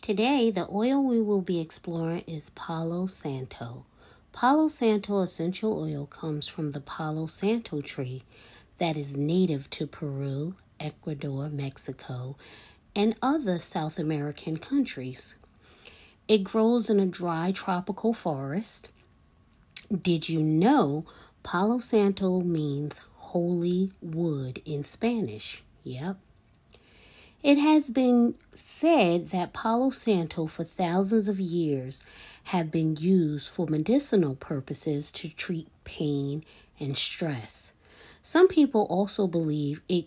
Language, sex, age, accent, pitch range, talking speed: English, female, 40-59, American, 150-210 Hz, 115 wpm